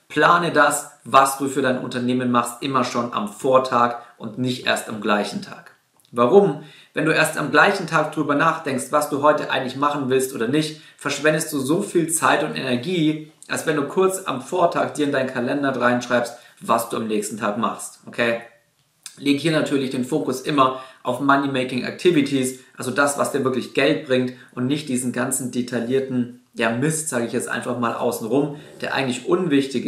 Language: German